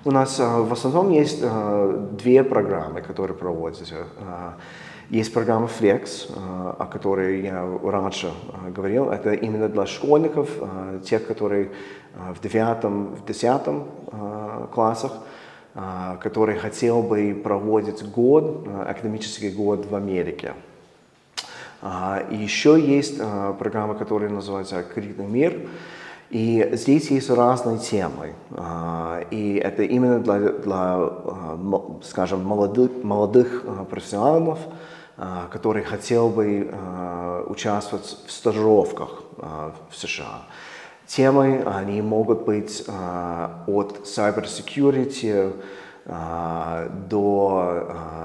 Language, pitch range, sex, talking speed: Russian, 95-115 Hz, male, 105 wpm